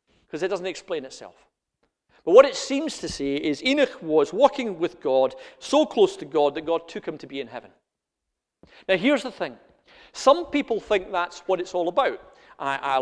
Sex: male